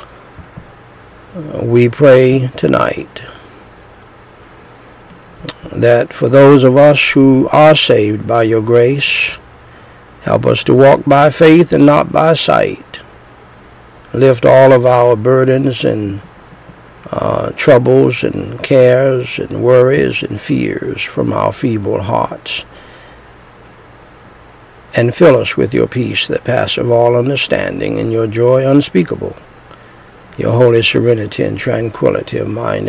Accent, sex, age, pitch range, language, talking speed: American, male, 60-79, 115-140 Hz, English, 115 wpm